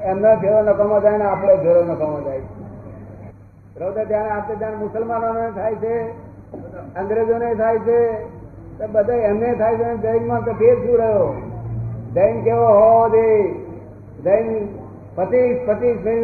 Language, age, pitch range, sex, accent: Gujarati, 50-69, 165-220 Hz, male, native